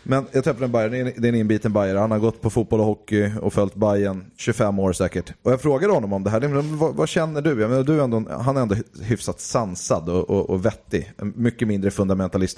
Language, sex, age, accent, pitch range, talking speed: English, male, 30-49, Swedish, 95-115 Hz, 235 wpm